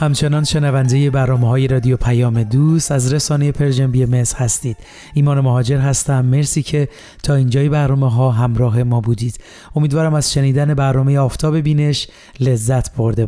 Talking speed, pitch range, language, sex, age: 150 wpm, 130-150 Hz, Persian, male, 30-49